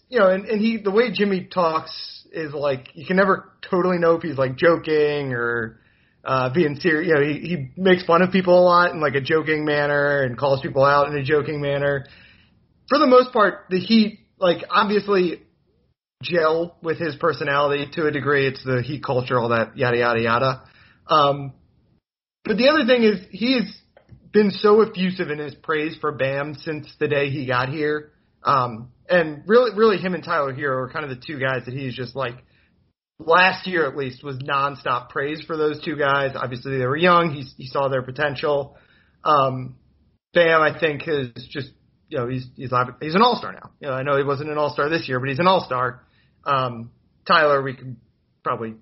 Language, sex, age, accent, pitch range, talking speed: English, male, 30-49, American, 130-180 Hz, 200 wpm